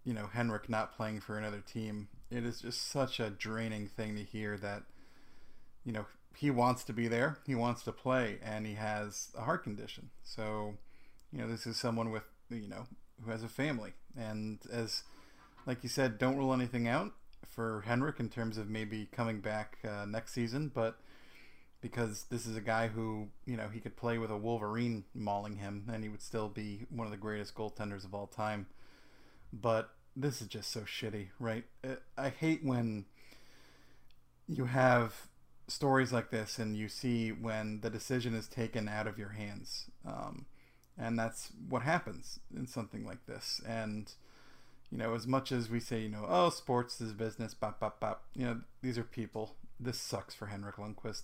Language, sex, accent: English, male, American